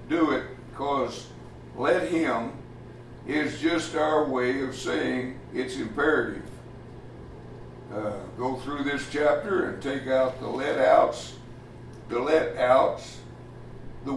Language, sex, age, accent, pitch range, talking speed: English, male, 60-79, American, 120-145 Hz, 120 wpm